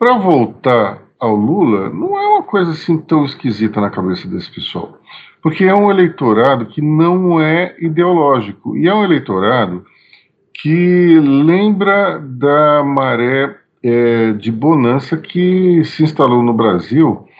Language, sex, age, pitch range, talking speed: Portuguese, male, 50-69, 115-165 Hz, 130 wpm